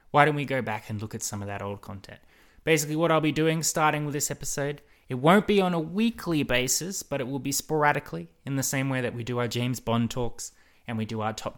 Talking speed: 260 wpm